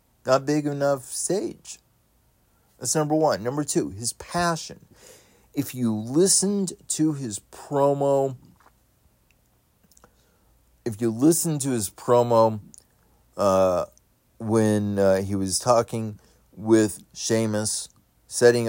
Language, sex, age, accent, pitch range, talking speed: English, male, 40-59, American, 100-130 Hz, 105 wpm